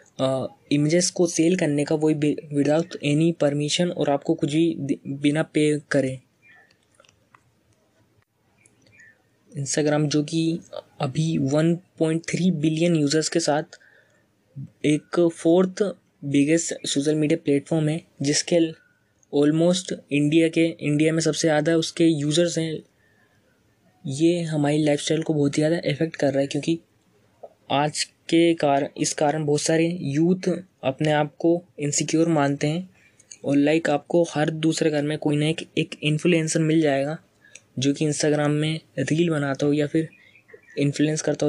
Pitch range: 145-165 Hz